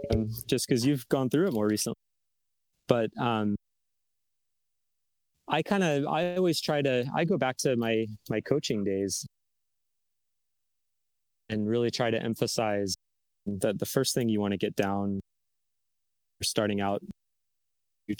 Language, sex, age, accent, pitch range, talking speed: English, male, 30-49, American, 100-120 Hz, 140 wpm